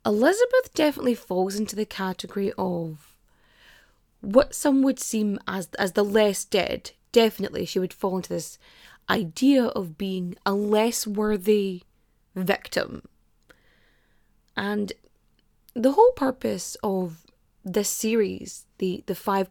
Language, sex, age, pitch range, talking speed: English, female, 20-39, 195-280 Hz, 120 wpm